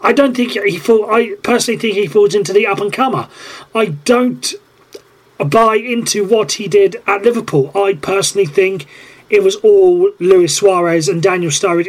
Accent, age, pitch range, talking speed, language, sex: British, 30-49, 180-240 Hz, 175 wpm, English, male